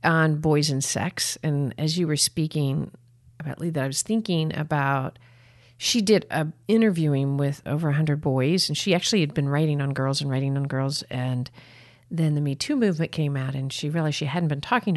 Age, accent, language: 50-69, American, English